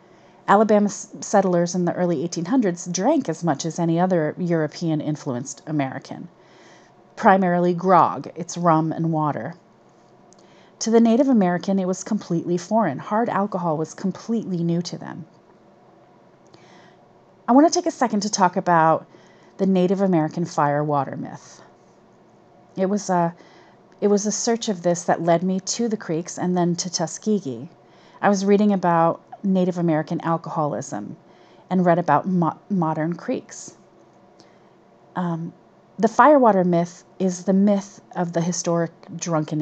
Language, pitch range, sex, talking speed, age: English, 165-205 Hz, female, 135 wpm, 30-49